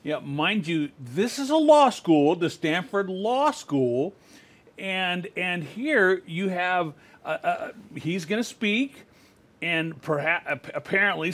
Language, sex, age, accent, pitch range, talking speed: English, male, 40-59, American, 150-200 Hz, 140 wpm